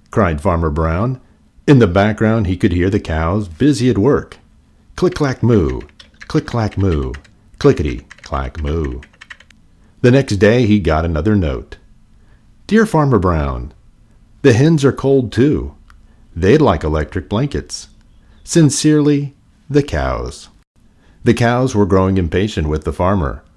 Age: 50-69